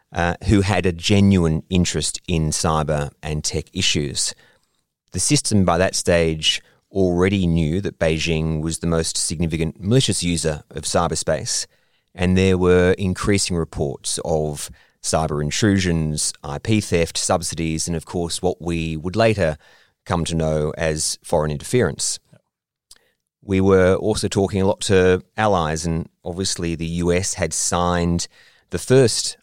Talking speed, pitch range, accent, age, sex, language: 140 wpm, 80-95 Hz, Australian, 30-49, male, English